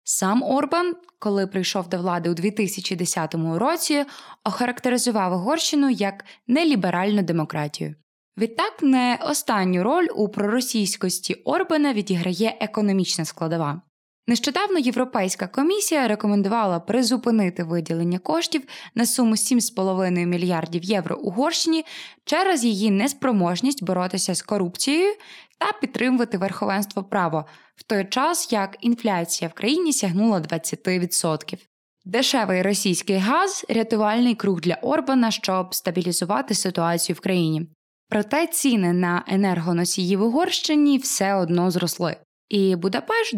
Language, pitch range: Ukrainian, 180-255 Hz